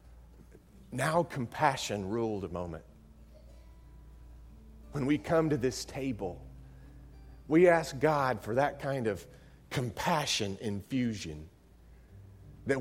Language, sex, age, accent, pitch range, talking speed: English, male, 40-59, American, 85-140 Hz, 100 wpm